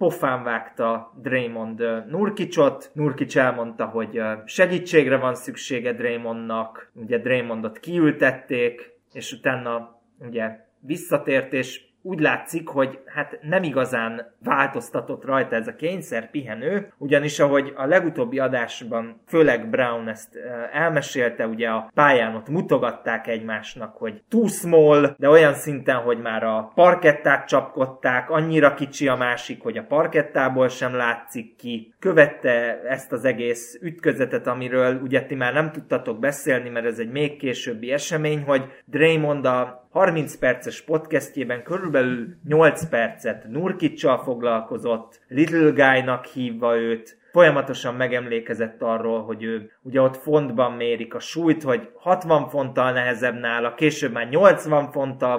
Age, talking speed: 20-39, 130 wpm